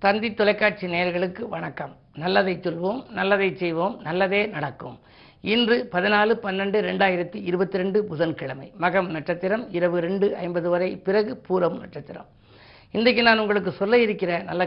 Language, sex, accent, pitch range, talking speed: Tamil, female, native, 175-215 Hz, 125 wpm